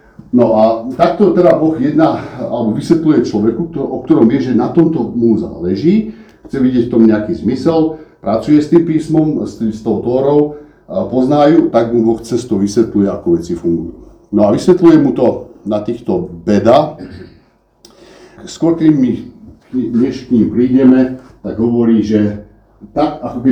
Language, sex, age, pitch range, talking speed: Slovak, male, 60-79, 110-160 Hz, 150 wpm